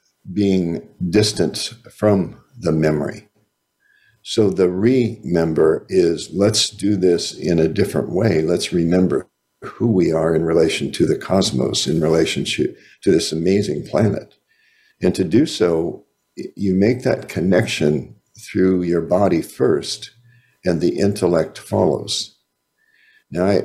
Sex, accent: male, American